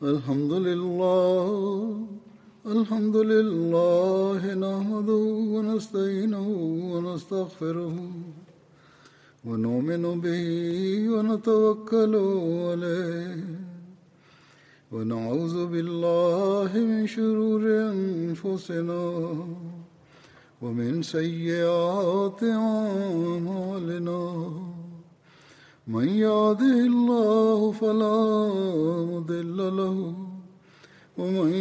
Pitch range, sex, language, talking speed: 170-215 Hz, male, Swahili, 55 wpm